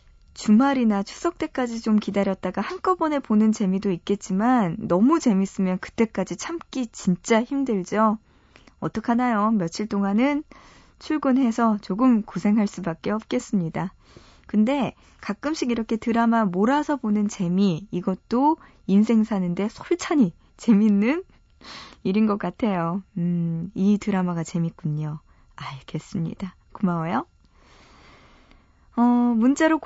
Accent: native